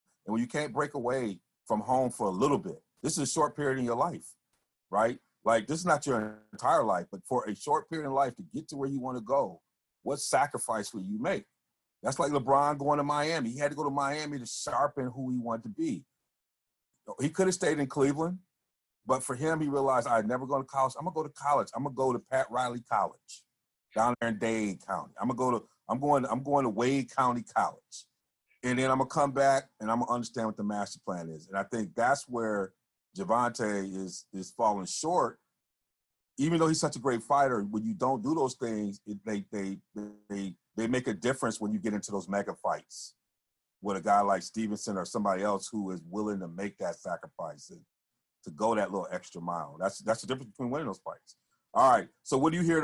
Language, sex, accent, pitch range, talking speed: English, male, American, 105-140 Hz, 240 wpm